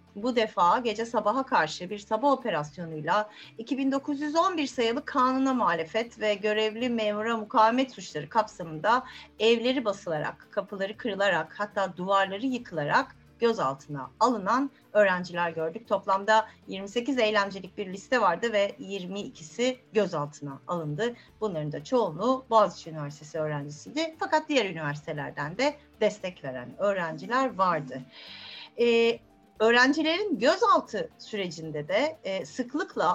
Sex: female